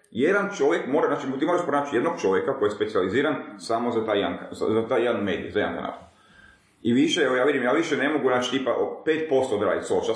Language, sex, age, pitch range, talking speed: Croatian, male, 30-49, 125-170 Hz, 205 wpm